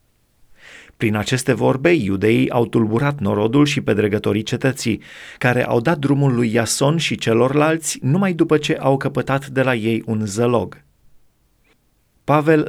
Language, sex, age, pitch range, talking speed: Romanian, male, 30-49, 115-150 Hz, 135 wpm